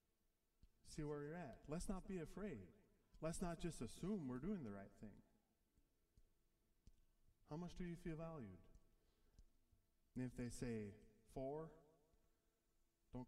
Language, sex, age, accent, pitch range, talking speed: English, male, 20-39, American, 110-145 Hz, 130 wpm